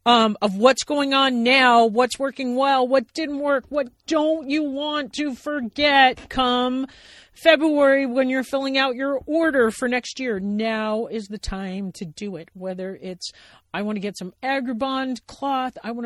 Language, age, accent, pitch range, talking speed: English, 40-59, American, 180-235 Hz, 175 wpm